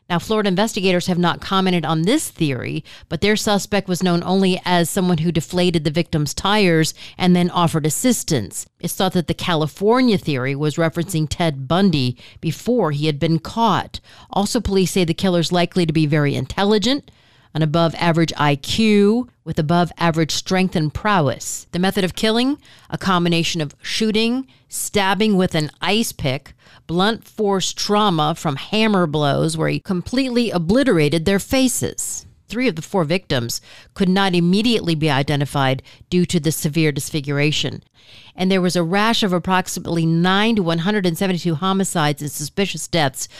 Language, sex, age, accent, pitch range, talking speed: English, female, 50-69, American, 155-195 Hz, 155 wpm